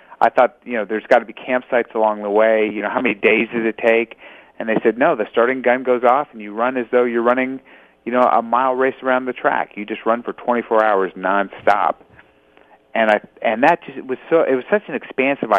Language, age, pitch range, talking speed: English, 40-59, 105-130 Hz, 245 wpm